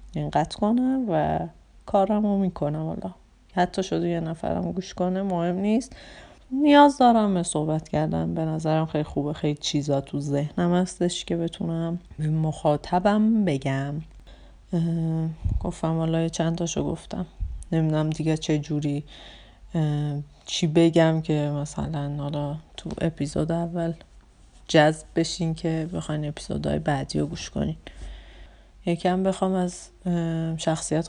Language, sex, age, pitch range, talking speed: Persian, female, 30-49, 150-175 Hz, 135 wpm